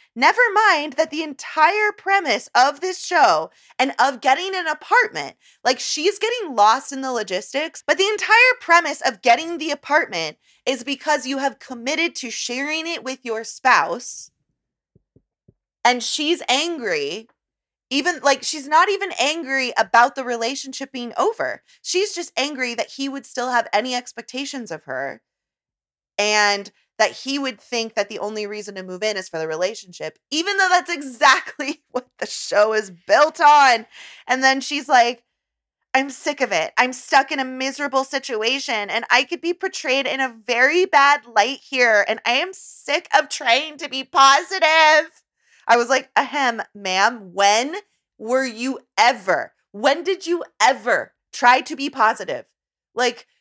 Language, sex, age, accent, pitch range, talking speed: English, female, 20-39, American, 240-320 Hz, 160 wpm